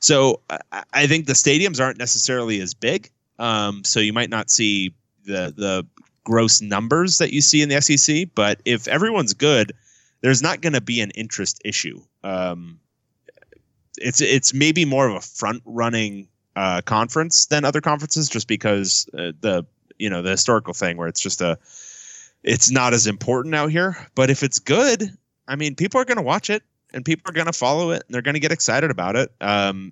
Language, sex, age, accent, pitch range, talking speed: English, male, 30-49, American, 100-140 Hz, 195 wpm